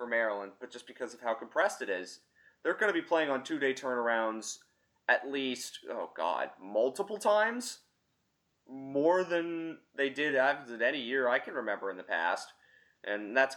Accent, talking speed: American, 175 wpm